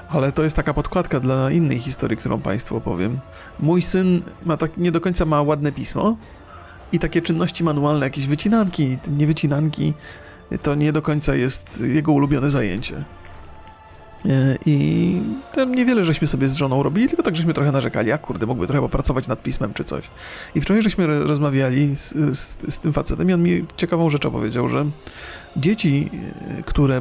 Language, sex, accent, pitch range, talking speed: Polish, male, native, 135-165 Hz, 170 wpm